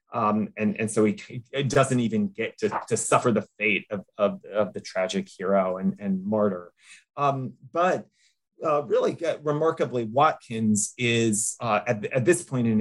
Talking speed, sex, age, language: 175 wpm, male, 30-49, English